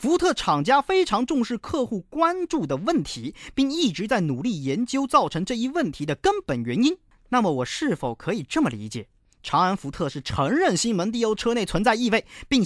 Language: Chinese